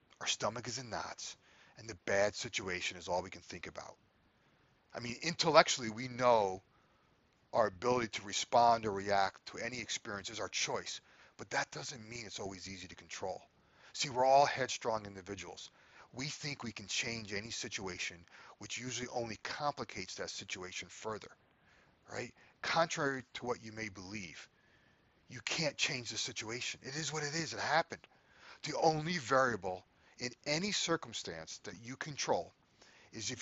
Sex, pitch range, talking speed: male, 100-130 Hz, 160 wpm